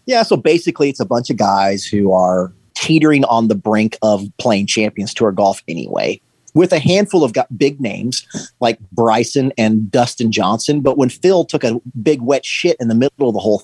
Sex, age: male, 30-49